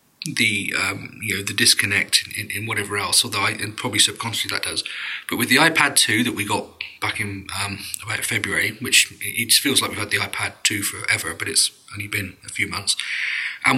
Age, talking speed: 40-59, 215 wpm